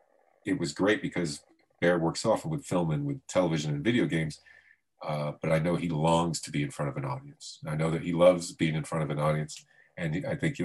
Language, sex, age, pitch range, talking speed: English, male, 40-59, 75-110 Hz, 240 wpm